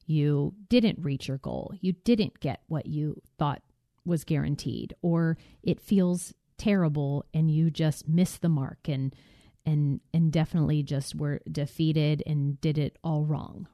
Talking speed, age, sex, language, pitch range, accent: 155 wpm, 30-49, female, English, 155-200 Hz, American